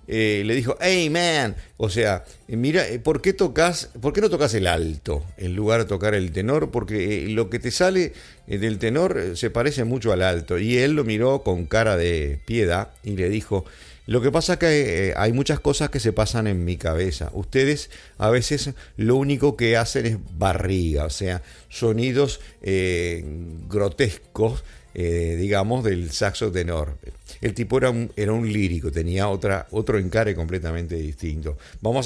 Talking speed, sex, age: 170 wpm, male, 50-69